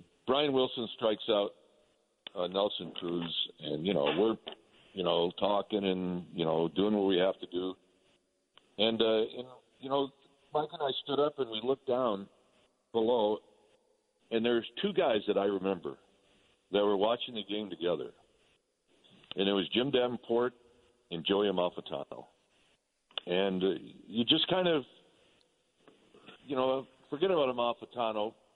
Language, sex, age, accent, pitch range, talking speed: English, male, 60-79, American, 90-130 Hz, 145 wpm